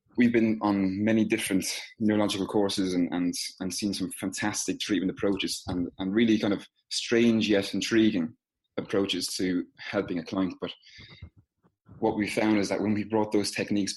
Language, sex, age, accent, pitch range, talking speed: English, male, 20-39, British, 95-110 Hz, 170 wpm